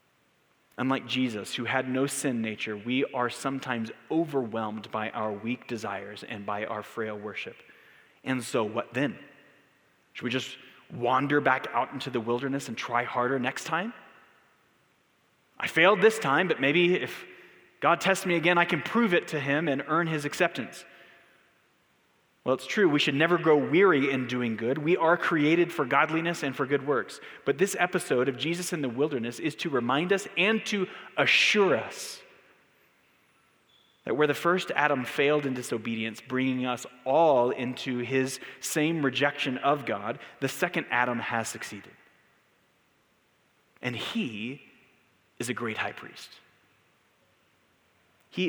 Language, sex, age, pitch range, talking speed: English, male, 30-49, 125-165 Hz, 155 wpm